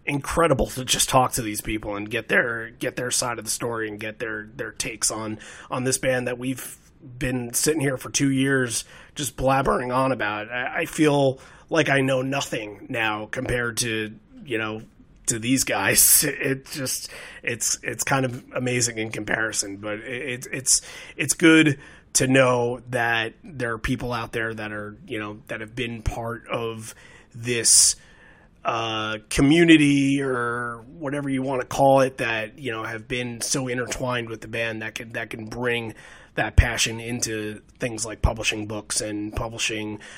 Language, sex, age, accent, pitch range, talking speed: English, male, 30-49, American, 110-135 Hz, 175 wpm